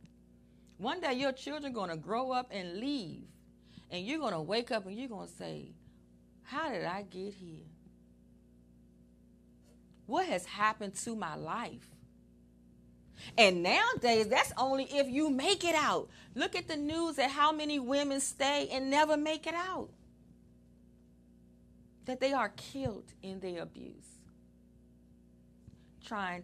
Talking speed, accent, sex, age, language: 145 wpm, American, female, 40-59, English